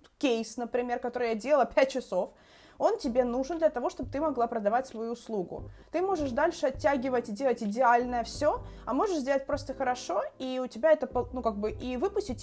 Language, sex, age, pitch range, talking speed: Ukrainian, female, 20-39, 230-280 Hz, 195 wpm